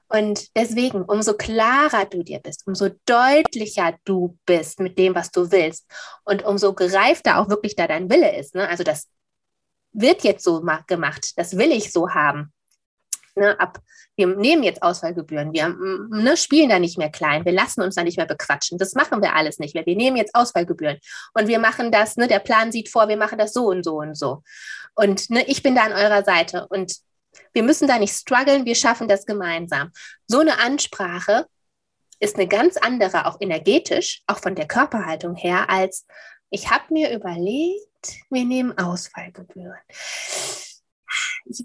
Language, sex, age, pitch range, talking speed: German, female, 20-39, 180-245 Hz, 180 wpm